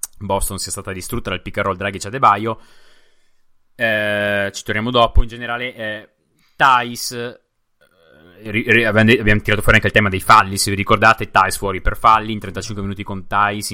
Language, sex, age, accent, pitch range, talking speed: Italian, male, 20-39, native, 95-115 Hz, 170 wpm